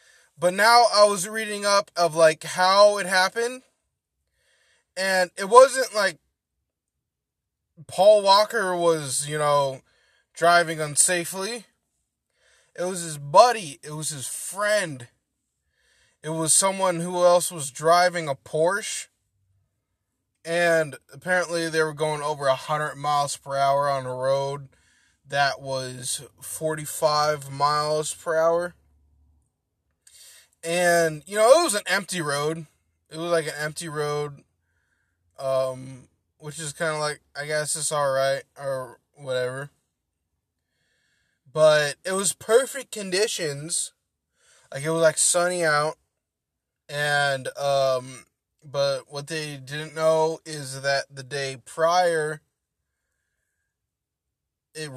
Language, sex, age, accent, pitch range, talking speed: English, male, 20-39, American, 135-175 Hz, 120 wpm